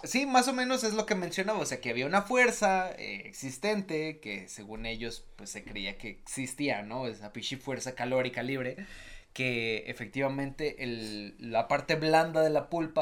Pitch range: 120-175 Hz